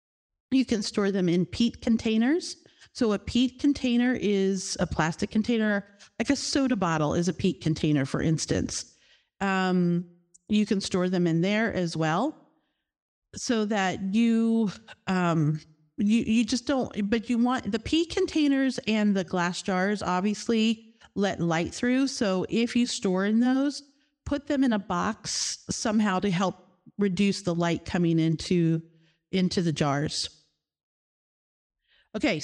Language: English